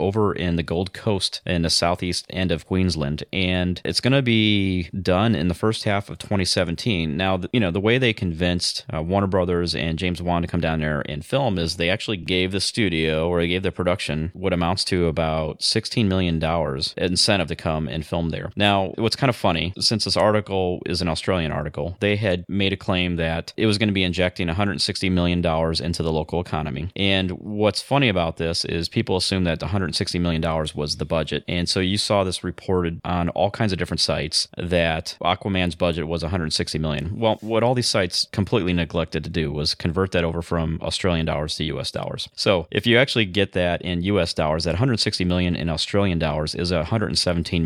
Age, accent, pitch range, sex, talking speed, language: 30-49, American, 80-100 Hz, male, 210 wpm, English